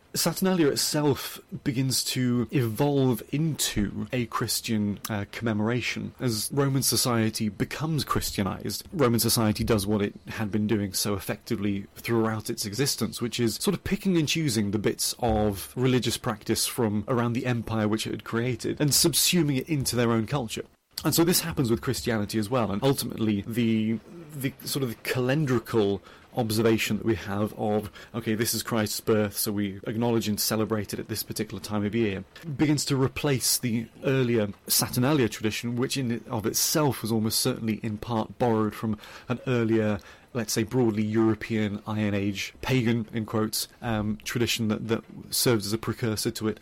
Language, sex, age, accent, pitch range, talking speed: English, male, 30-49, British, 110-130 Hz, 170 wpm